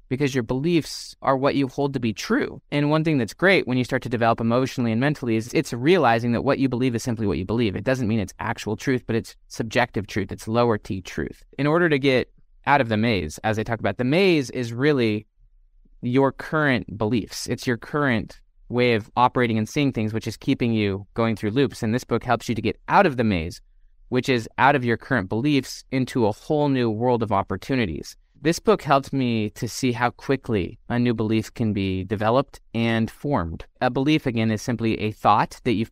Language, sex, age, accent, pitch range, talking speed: English, male, 20-39, American, 110-130 Hz, 225 wpm